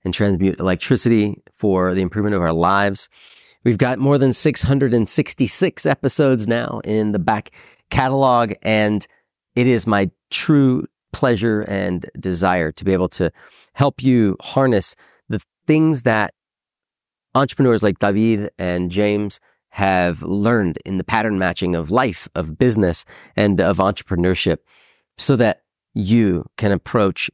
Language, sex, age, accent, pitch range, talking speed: English, male, 40-59, American, 90-115 Hz, 135 wpm